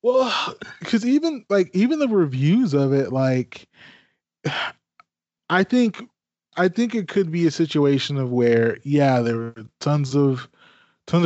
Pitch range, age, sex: 125-155 Hz, 20-39, male